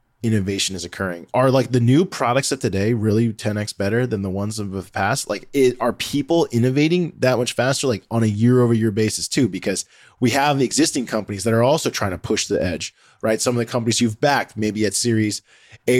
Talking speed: 225 wpm